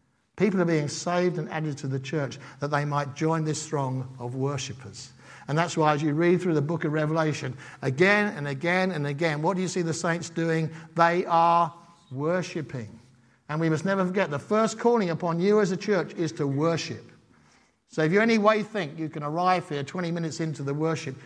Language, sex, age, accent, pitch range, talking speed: English, male, 60-79, British, 125-170 Hz, 210 wpm